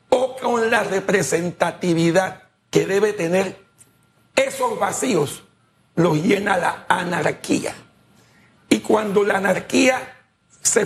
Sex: male